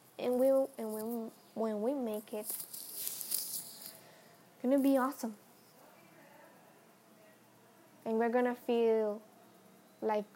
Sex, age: female, 10-29